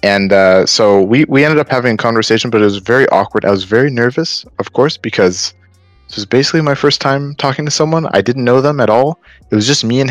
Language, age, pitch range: English, 20-39, 100-135 Hz